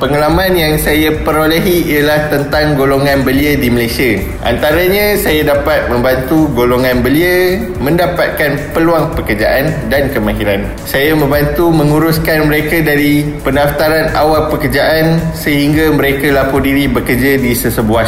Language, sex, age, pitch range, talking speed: Malay, male, 20-39, 130-160 Hz, 120 wpm